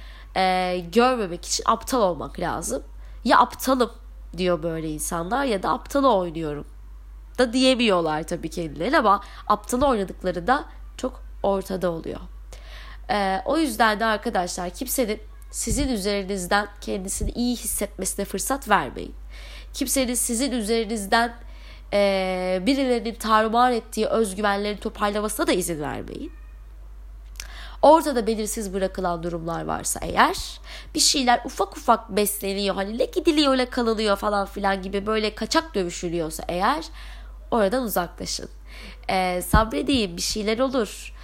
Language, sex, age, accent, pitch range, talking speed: Turkish, female, 30-49, native, 185-245 Hz, 120 wpm